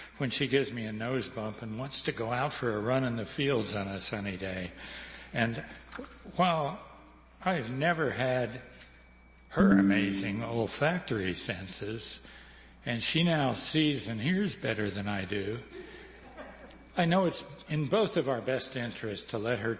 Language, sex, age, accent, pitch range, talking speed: English, male, 60-79, American, 100-130 Hz, 160 wpm